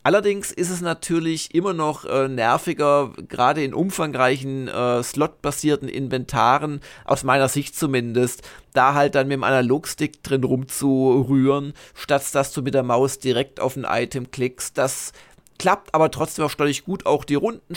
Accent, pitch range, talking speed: German, 130-155 Hz, 160 wpm